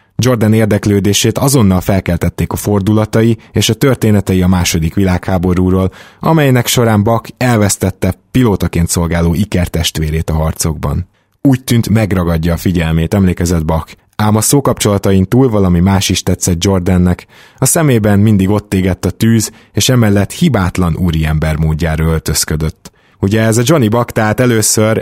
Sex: male